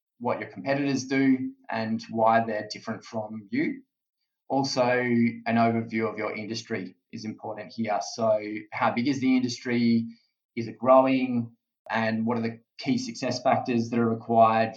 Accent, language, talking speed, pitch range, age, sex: Australian, English, 155 wpm, 115-135 Hz, 20-39, male